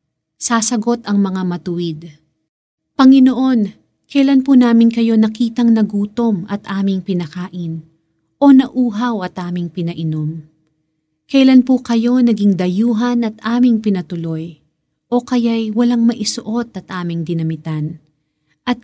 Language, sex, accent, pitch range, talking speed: Filipino, female, native, 165-225 Hz, 110 wpm